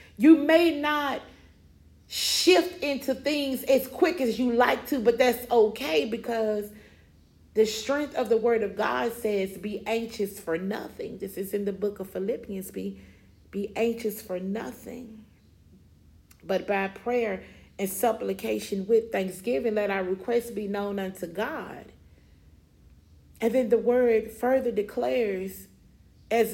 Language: English